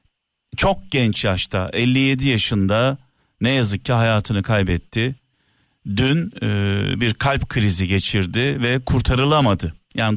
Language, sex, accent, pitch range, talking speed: Turkish, male, native, 105-140 Hz, 110 wpm